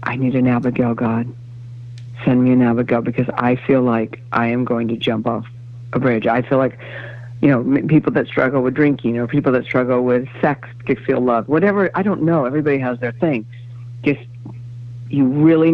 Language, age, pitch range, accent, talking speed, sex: English, 60-79, 120-150 Hz, American, 195 wpm, female